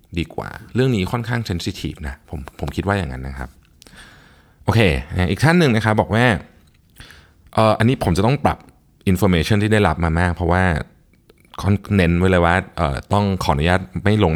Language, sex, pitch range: Thai, male, 80-105 Hz